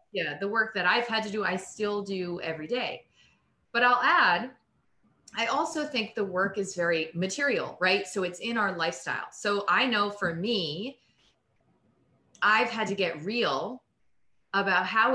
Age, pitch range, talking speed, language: 30-49, 160-205 Hz, 165 wpm, English